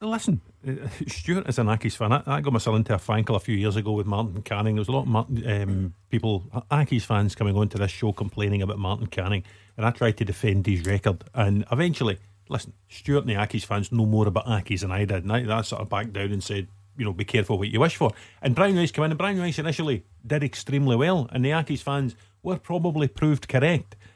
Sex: male